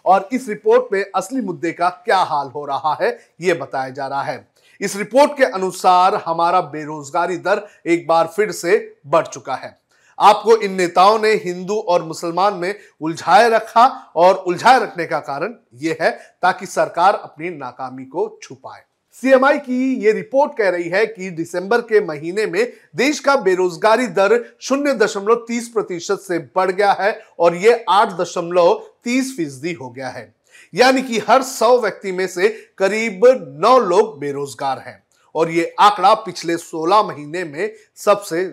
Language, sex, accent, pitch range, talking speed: Hindi, male, native, 170-225 Hz, 130 wpm